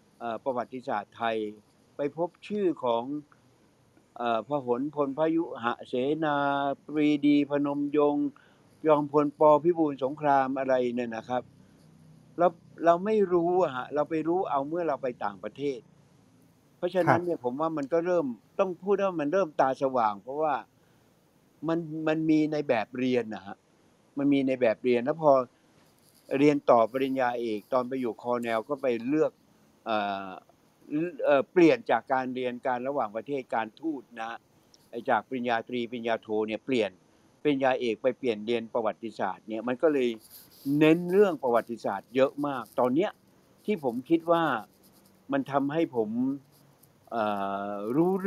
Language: Thai